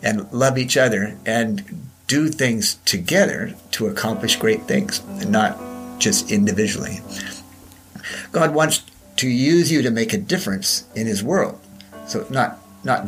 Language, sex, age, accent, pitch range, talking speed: English, male, 50-69, American, 95-140 Hz, 140 wpm